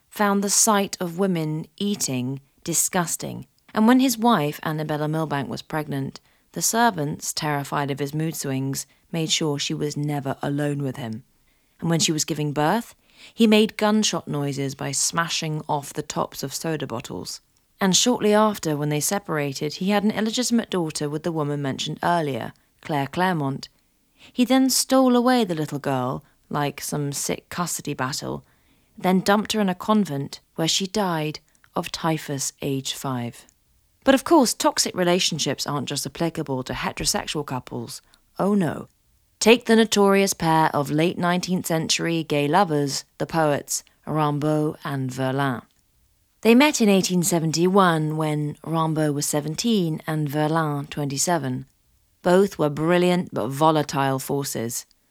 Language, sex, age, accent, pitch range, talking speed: English, female, 30-49, British, 145-195 Hz, 150 wpm